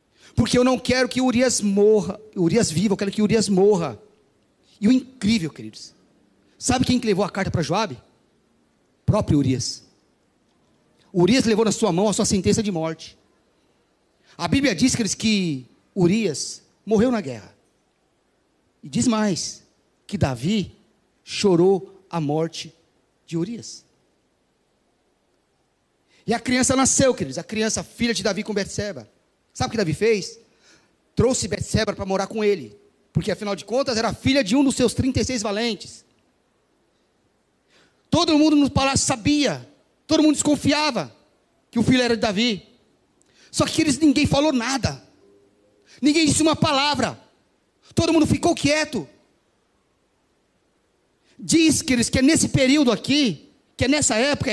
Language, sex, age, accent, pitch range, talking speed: Portuguese, male, 40-59, Brazilian, 190-260 Hz, 145 wpm